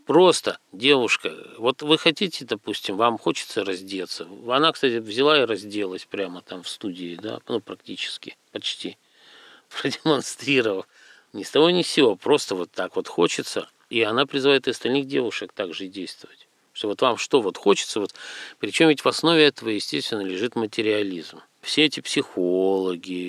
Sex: male